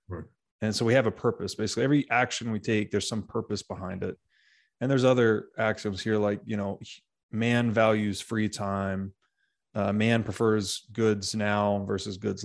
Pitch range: 105-135 Hz